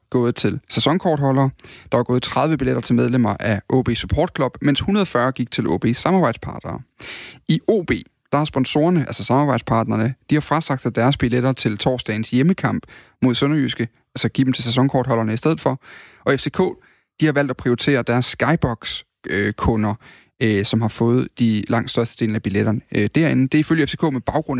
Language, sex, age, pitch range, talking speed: Danish, male, 30-49, 115-140 Hz, 180 wpm